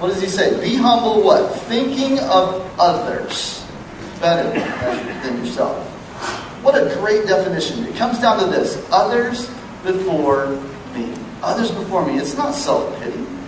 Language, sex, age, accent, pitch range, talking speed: English, male, 40-59, American, 155-225 Hz, 140 wpm